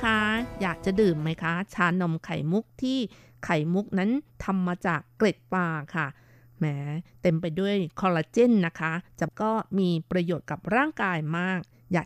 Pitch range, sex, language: 160-205 Hz, female, Thai